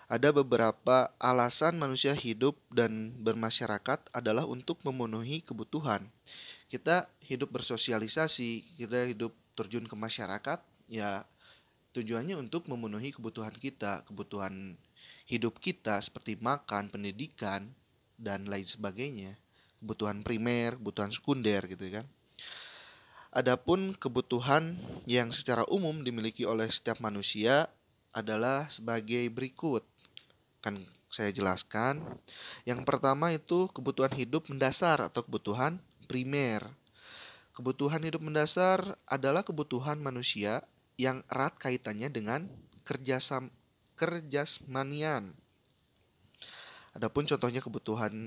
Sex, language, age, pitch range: male, Indonesian, 30-49, 110-140 Hz